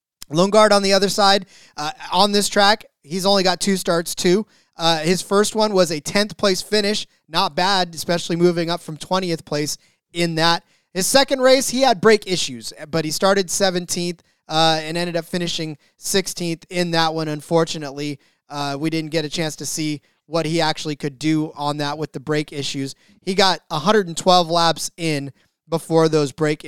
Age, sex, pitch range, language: 30-49, male, 160-200 Hz, English